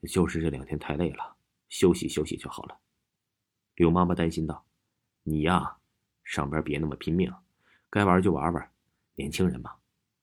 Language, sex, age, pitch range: Chinese, male, 30-49, 80-105 Hz